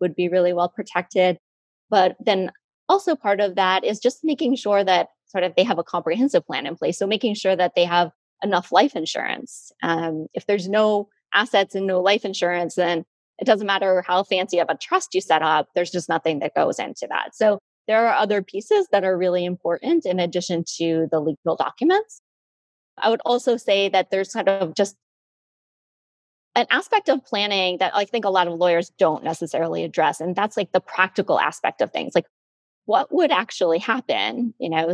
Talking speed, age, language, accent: 200 wpm, 20-39, English, American